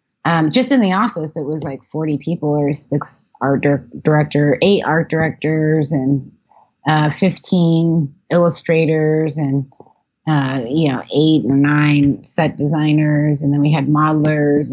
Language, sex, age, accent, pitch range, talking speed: English, female, 30-49, American, 145-165 Hz, 145 wpm